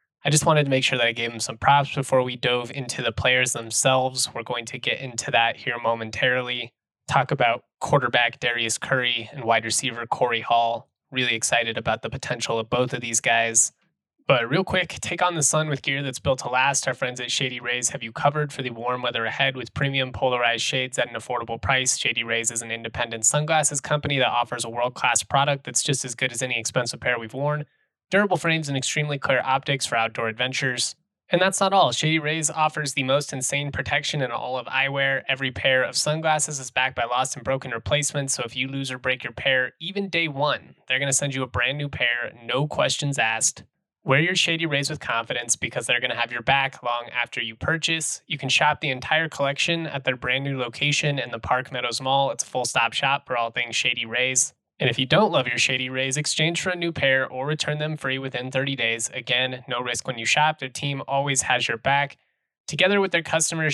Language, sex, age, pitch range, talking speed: English, male, 20-39, 120-145 Hz, 225 wpm